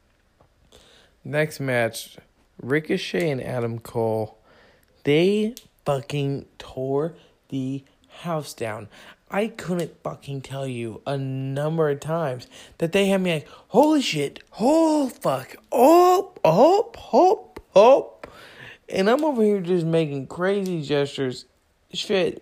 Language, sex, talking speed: English, male, 115 wpm